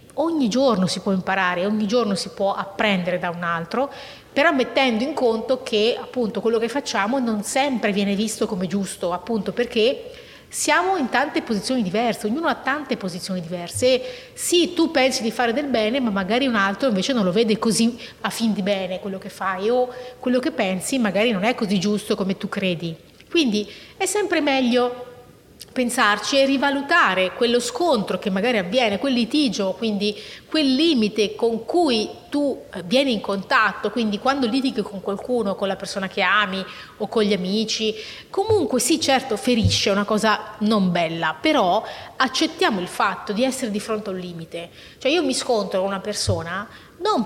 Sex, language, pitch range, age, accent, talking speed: female, Italian, 200-265 Hz, 30-49, native, 175 wpm